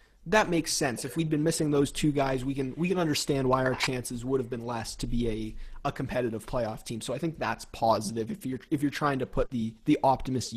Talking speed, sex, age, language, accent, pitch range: 250 wpm, male, 30-49, English, American, 120-140 Hz